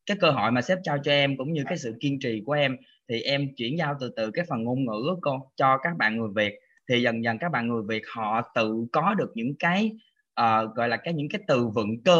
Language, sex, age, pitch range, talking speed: Vietnamese, male, 20-39, 120-170 Hz, 270 wpm